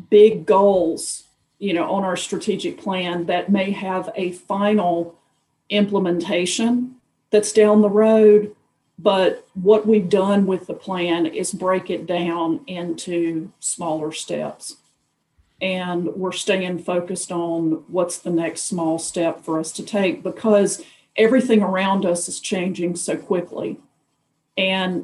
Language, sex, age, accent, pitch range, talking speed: English, female, 40-59, American, 170-200 Hz, 130 wpm